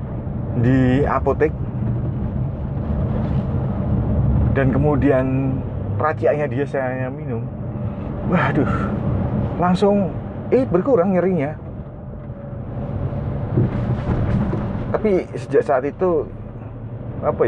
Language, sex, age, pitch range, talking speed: Indonesian, male, 30-49, 115-155 Hz, 60 wpm